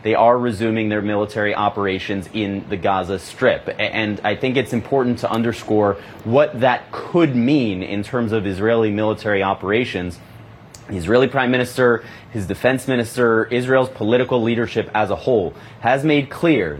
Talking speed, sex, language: 155 wpm, male, English